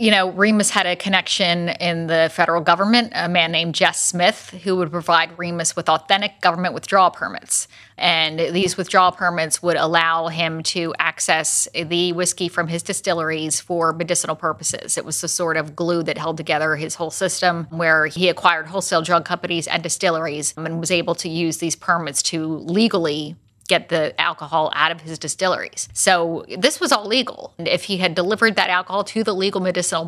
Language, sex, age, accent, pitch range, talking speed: English, female, 30-49, American, 165-195 Hz, 185 wpm